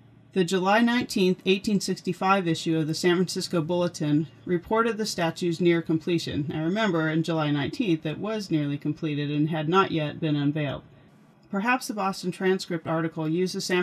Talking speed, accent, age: 165 wpm, American, 40-59